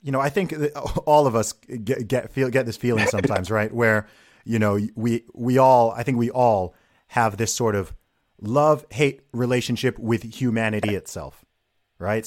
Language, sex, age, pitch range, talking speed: English, male, 30-49, 105-125 Hz, 170 wpm